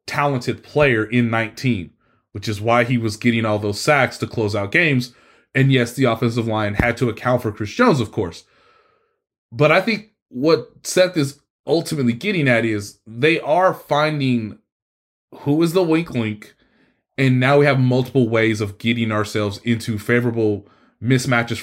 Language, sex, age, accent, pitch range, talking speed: English, male, 20-39, American, 110-145 Hz, 165 wpm